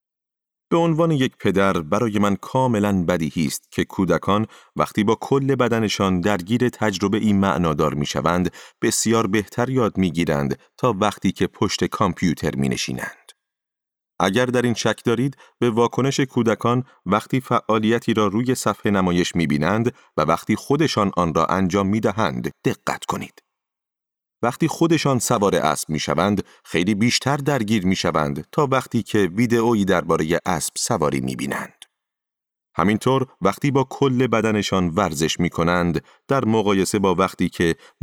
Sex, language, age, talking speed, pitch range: male, Persian, 30-49, 135 wpm, 90-120 Hz